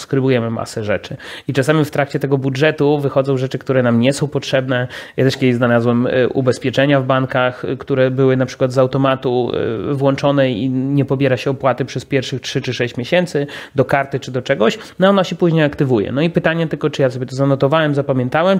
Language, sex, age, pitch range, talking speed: Polish, male, 30-49, 130-150 Hz, 195 wpm